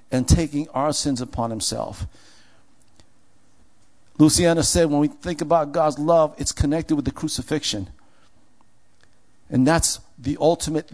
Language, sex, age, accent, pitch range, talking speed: English, male, 50-69, American, 125-155 Hz, 125 wpm